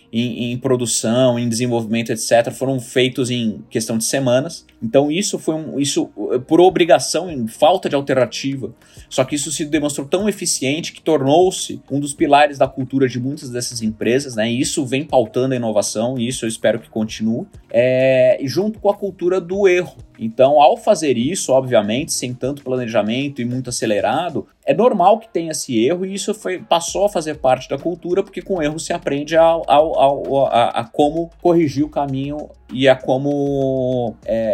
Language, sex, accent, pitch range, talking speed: Portuguese, male, Brazilian, 120-165 Hz, 180 wpm